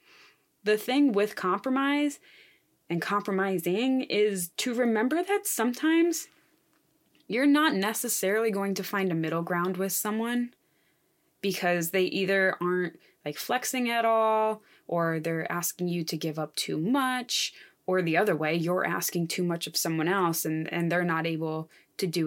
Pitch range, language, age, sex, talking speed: 170-230 Hz, English, 20-39, female, 155 wpm